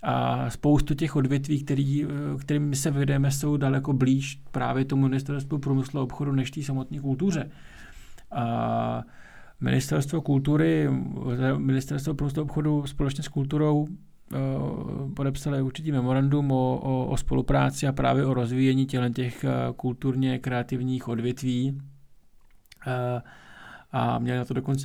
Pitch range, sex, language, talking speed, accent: 120-140 Hz, male, Czech, 125 wpm, native